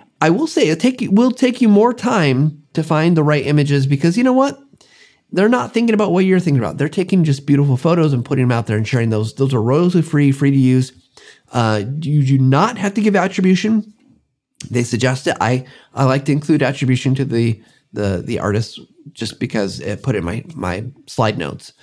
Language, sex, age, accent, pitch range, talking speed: English, male, 30-49, American, 130-175 Hz, 210 wpm